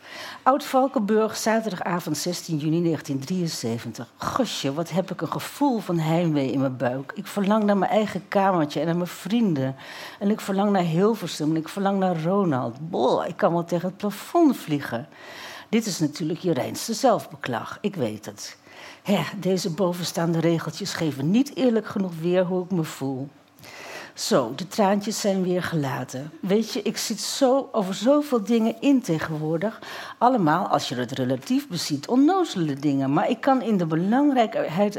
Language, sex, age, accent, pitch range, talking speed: Dutch, female, 60-79, Dutch, 155-215 Hz, 160 wpm